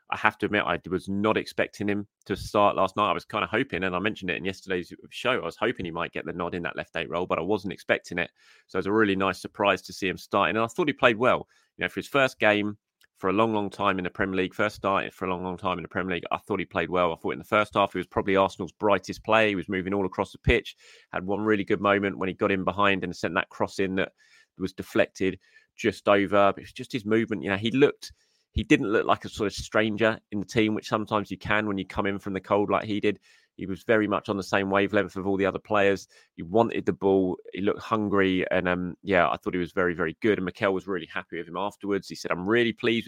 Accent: British